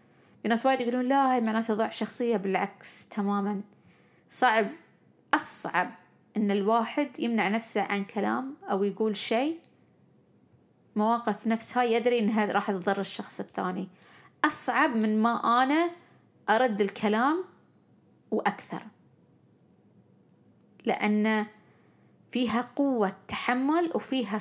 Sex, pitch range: female, 205-250 Hz